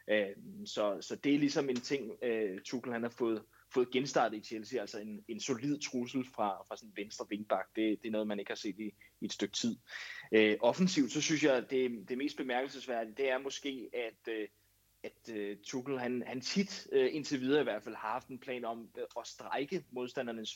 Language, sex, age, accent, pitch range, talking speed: Danish, male, 20-39, native, 105-130 Hz, 200 wpm